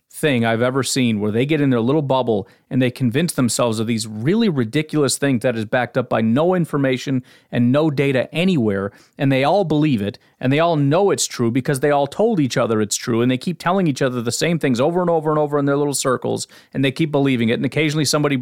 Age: 30-49